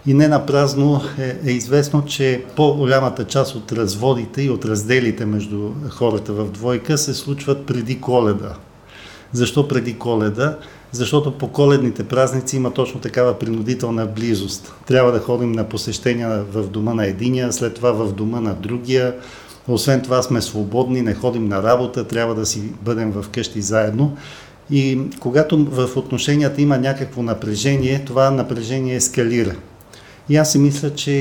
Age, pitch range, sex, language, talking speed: 50-69, 115-135 Hz, male, Bulgarian, 155 wpm